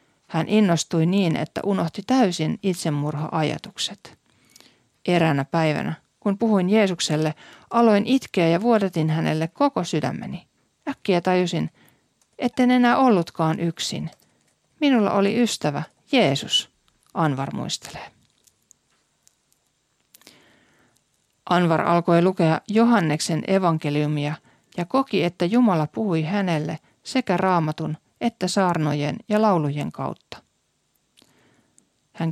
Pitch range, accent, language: 160-210 Hz, native, Finnish